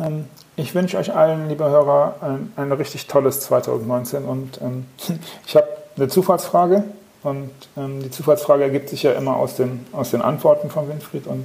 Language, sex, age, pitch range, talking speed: German, male, 40-59, 130-165 Hz, 175 wpm